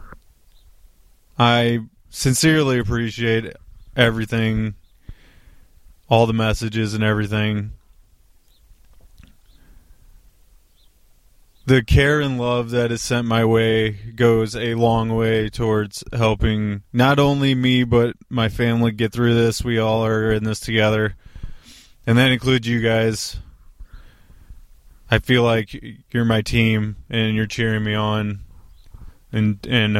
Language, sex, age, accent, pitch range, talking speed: English, male, 20-39, American, 100-120 Hz, 115 wpm